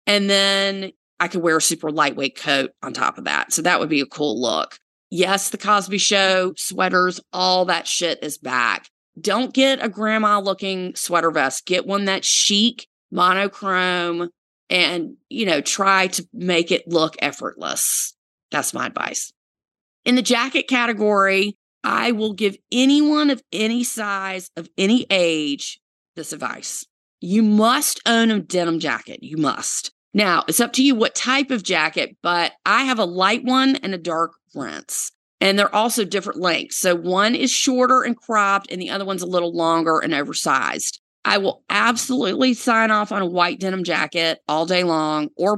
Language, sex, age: English, female, 30-49